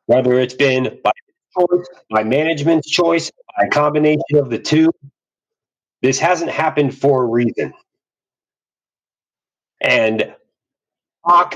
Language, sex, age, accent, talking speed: English, male, 30-49, American, 115 wpm